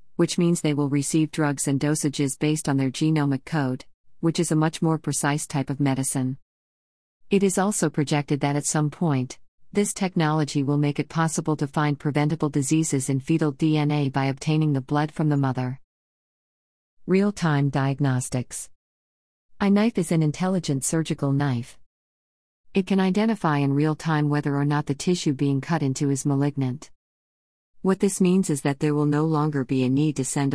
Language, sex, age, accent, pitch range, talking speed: English, female, 40-59, American, 135-160 Hz, 175 wpm